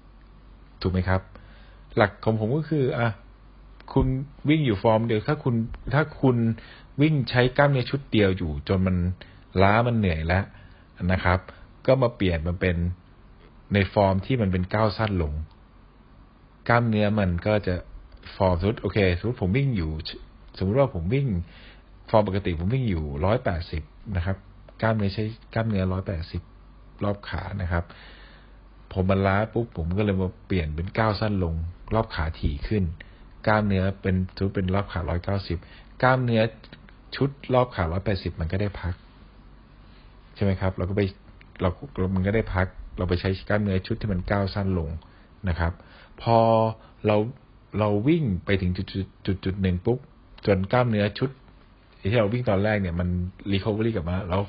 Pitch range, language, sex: 90-110 Hz, Thai, male